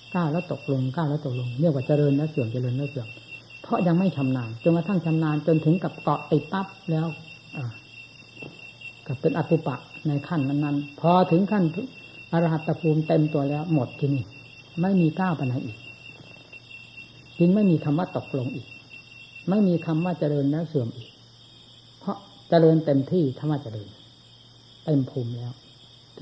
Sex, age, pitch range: female, 60-79, 125-165 Hz